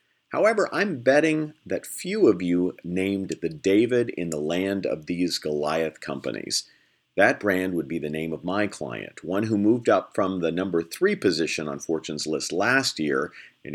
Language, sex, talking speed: English, male, 180 wpm